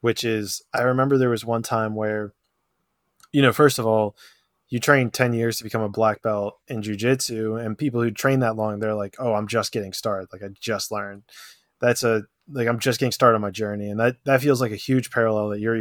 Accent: American